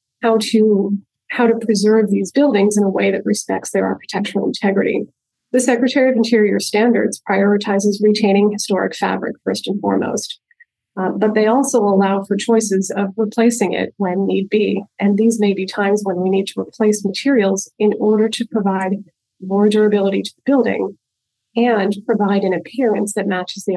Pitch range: 190-220 Hz